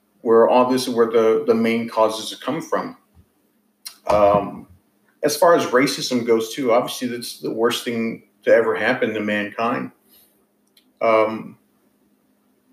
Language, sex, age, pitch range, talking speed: English, male, 40-59, 110-130 Hz, 135 wpm